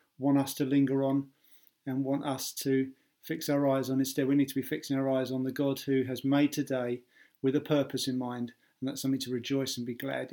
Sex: male